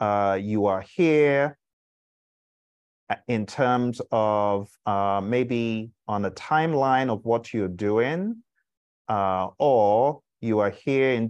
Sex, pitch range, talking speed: male, 100-145 Hz, 115 wpm